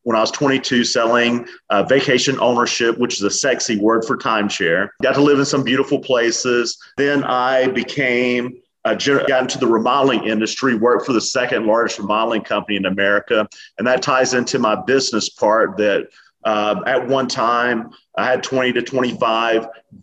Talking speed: 170 wpm